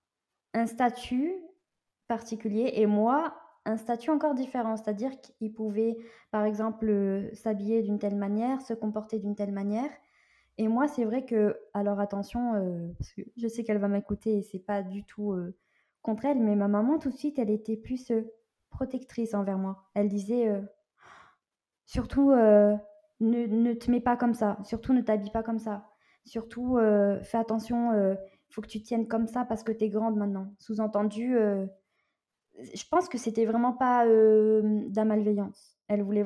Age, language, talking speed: 20-39, French, 180 wpm